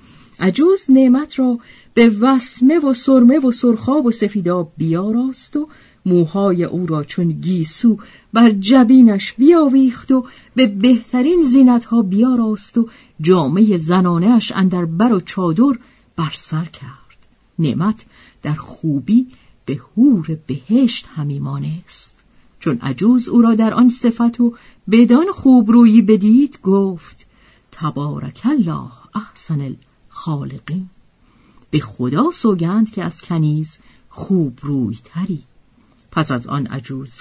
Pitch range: 160-255 Hz